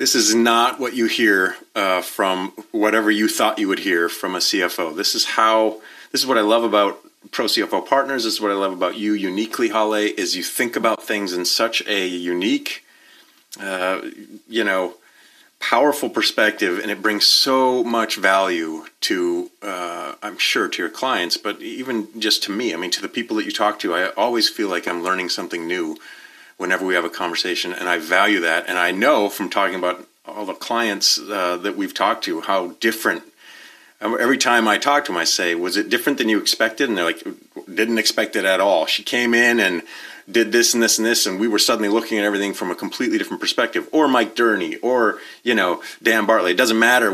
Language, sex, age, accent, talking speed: English, male, 40-59, American, 215 wpm